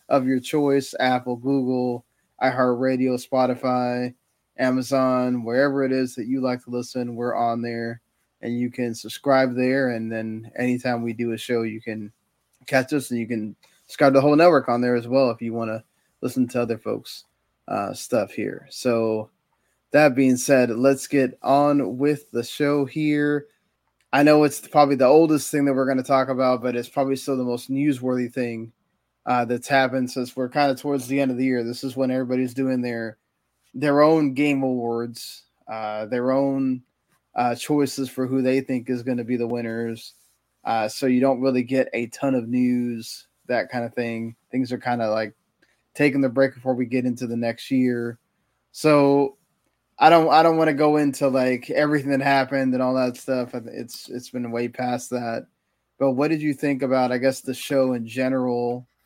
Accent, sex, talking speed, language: American, male, 195 wpm, English